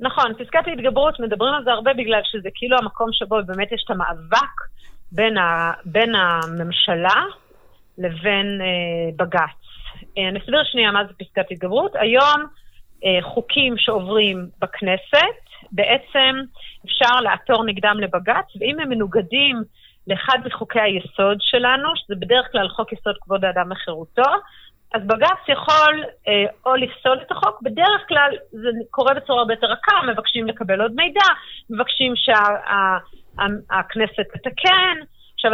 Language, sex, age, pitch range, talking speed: Hebrew, female, 30-49, 205-270 Hz, 135 wpm